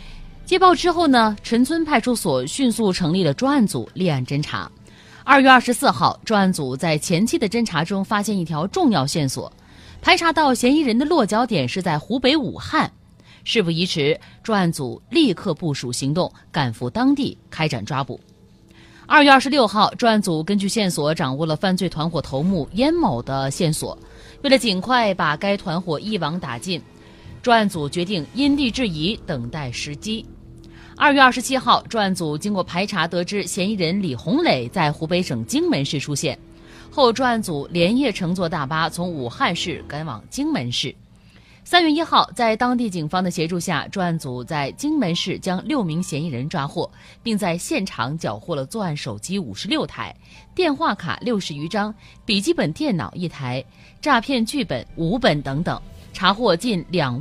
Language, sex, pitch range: Chinese, female, 155-235 Hz